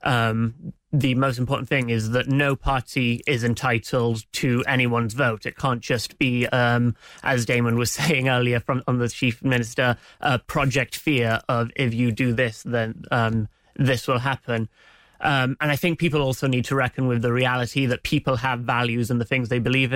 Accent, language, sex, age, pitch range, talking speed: British, English, male, 30-49, 120-140 Hz, 185 wpm